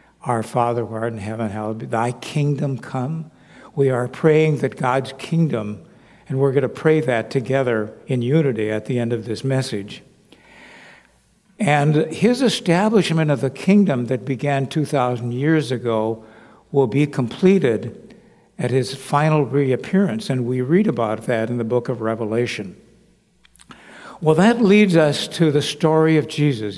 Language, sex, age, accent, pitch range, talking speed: English, male, 60-79, American, 120-160 Hz, 155 wpm